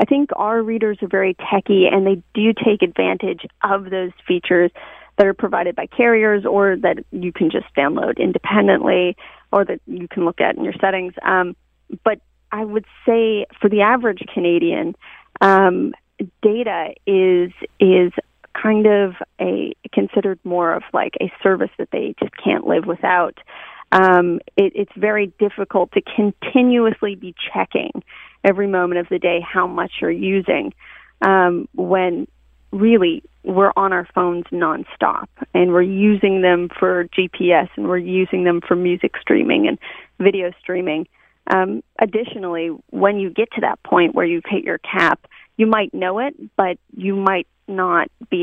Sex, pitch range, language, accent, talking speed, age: female, 180-210 Hz, English, American, 160 wpm, 30-49